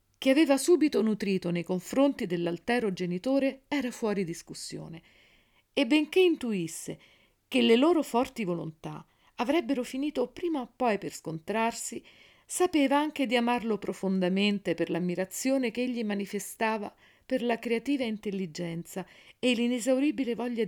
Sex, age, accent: female, 50-69, native